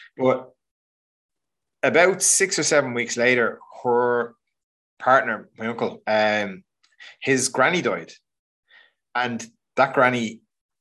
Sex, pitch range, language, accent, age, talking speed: male, 105-130 Hz, English, Irish, 20-39, 100 wpm